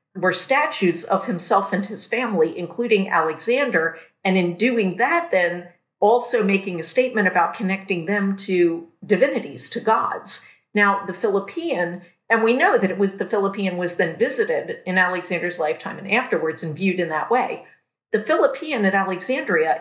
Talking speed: 160 wpm